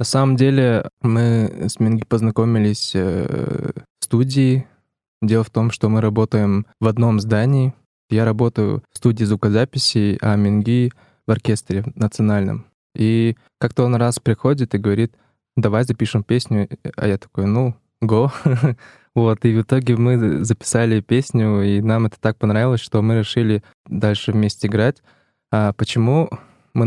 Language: Russian